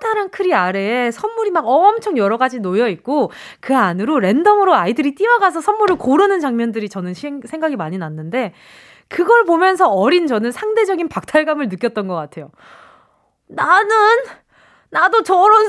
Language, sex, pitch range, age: Korean, female, 215-355 Hz, 20-39